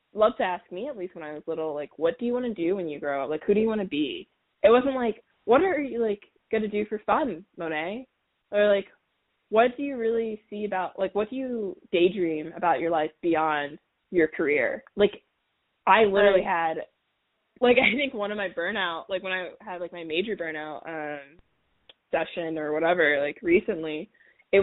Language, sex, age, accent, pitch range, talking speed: English, female, 20-39, American, 160-210 Hz, 205 wpm